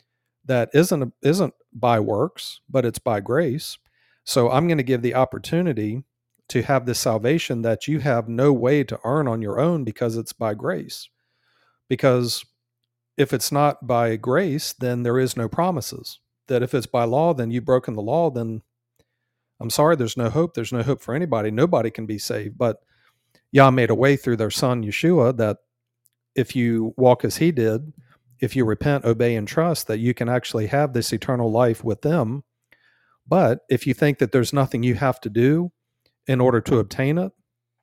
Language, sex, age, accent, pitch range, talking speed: English, male, 40-59, American, 115-140 Hz, 190 wpm